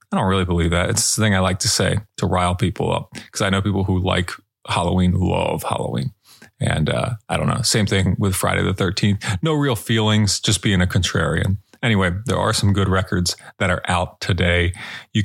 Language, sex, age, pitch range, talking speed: English, male, 30-49, 95-110 Hz, 215 wpm